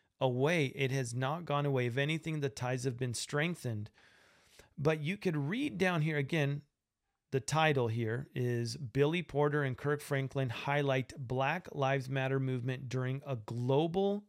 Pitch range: 130-160 Hz